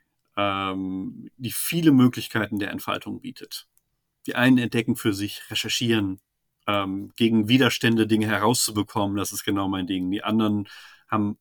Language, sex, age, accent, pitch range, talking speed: German, male, 40-59, German, 105-120 Hz, 130 wpm